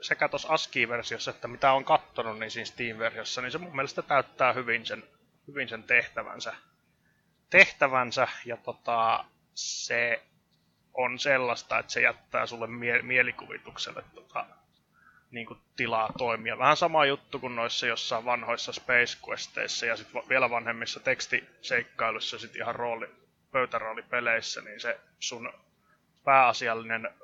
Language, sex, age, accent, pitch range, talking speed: Finnish, male, 20-39, native, 115-135 Hz, 130 wpm